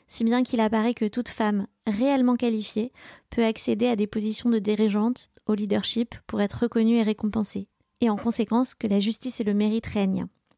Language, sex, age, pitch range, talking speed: French, female, 20-39, 205-235 Hz, 185 wpm